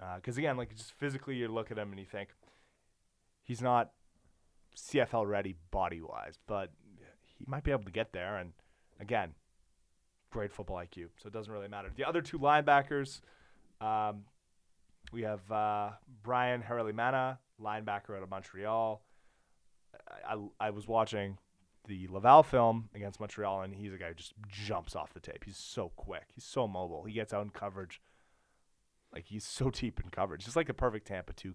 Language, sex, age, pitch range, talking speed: English, male, 30-49, 95-125 Hz, 175 wpm